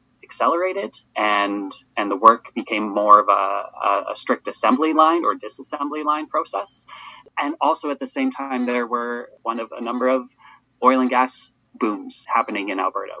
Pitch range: 110-140 Hz